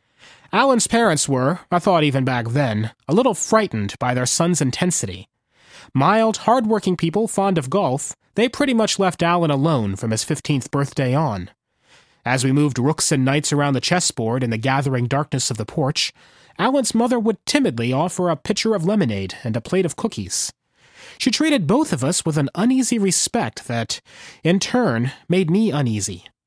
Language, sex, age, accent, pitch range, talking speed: English, male, 30-49, American, 125-190 Hz, 175 wpm